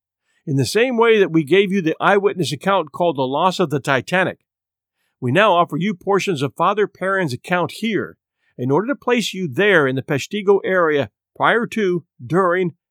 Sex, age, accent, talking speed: male, 50-69, American, 185 wpm